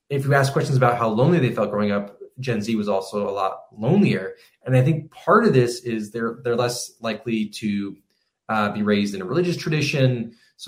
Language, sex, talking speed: English, male, 215 wpm